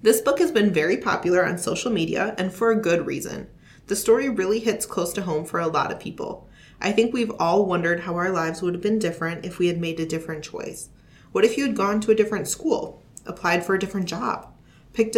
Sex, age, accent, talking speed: female, 30-49, American, 235 wpm